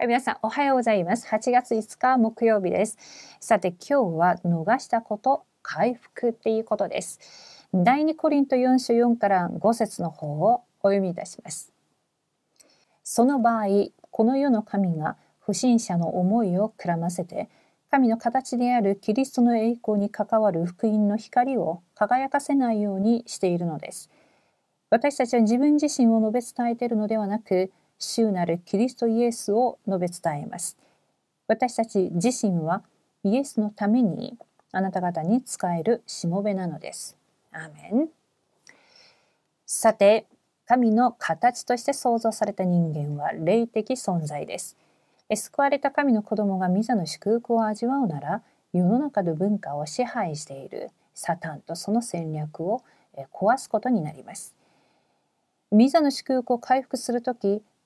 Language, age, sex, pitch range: Korean, 40-59, female, 190-245 Hz